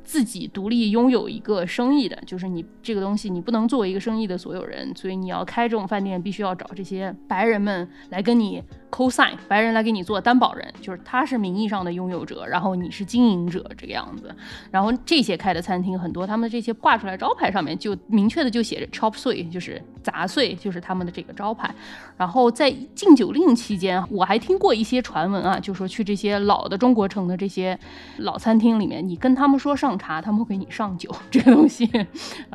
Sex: female